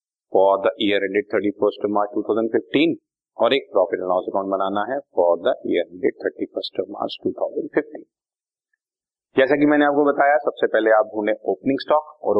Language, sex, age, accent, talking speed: Hindi, male, 40-59, native, 110 wpm